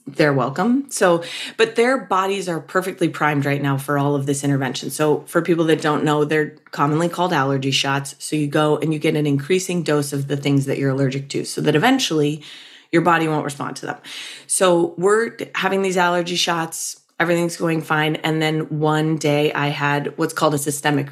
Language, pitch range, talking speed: English, 145-175 Hz, 200 wpm